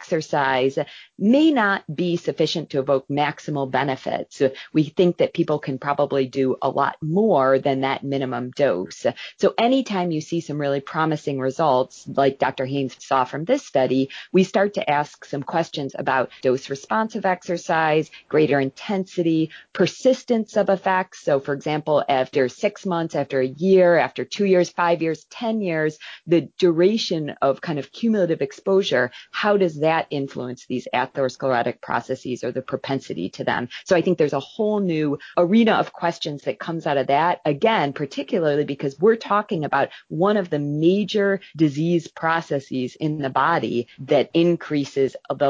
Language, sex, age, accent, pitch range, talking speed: English, female, 30-49, American, 135-180 Hz, 160 wpm